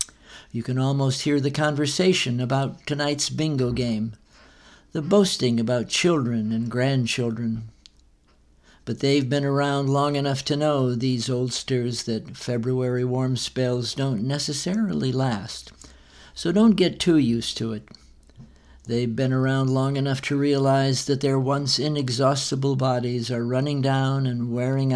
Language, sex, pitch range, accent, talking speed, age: English, male, 120-145 Hz, American, 135 wpm, 60-79